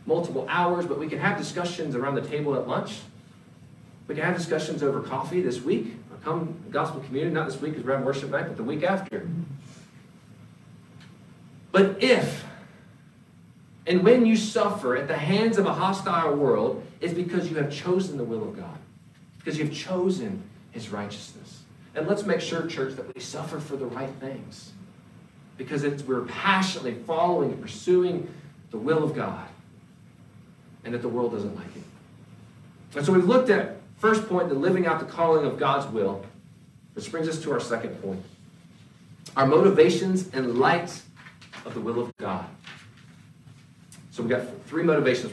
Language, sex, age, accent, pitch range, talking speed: English, male, 40-59, American, 135-180 Hz, 175 wpm